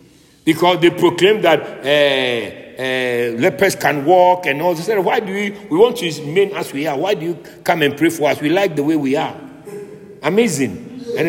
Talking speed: 205 wpm